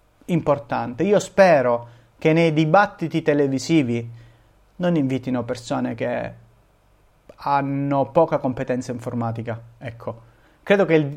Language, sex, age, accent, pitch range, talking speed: Italian, male, 30-49, native, 125-155 Hz, 100 wpm